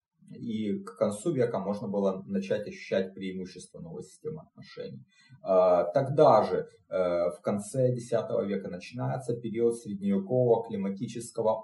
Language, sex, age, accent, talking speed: Russian, male, 30-49, native, 115 wpm